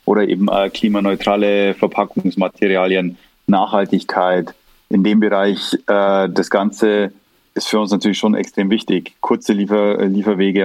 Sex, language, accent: male, English, German